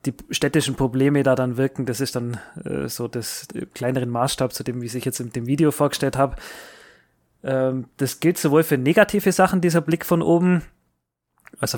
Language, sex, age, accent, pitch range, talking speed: German, male, 20-39, German, 125-150 Hz, 190 wpm